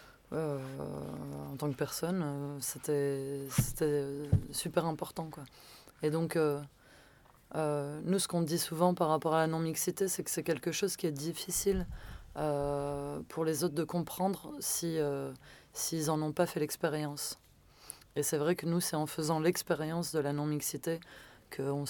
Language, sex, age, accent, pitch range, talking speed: French, female, 20-39, French, 145-165 Hz, 170 wpm